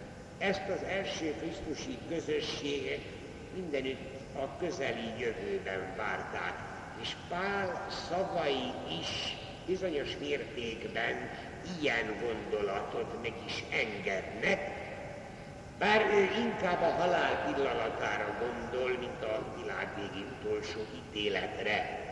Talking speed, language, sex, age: 90 wpm, Hungarian, male, 60-79